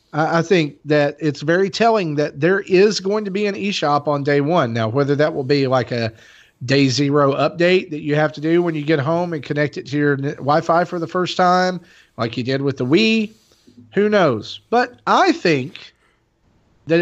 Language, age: English, 40-59